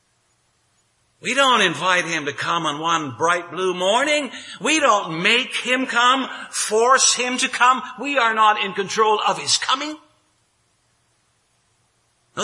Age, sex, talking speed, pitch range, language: 60-79, male, 140 wpm, 170-260 Hz, English